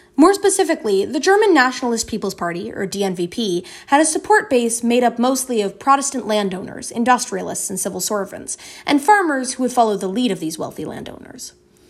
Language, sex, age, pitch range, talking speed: English, female, 20-39, 200-295 Hz, 170 wpm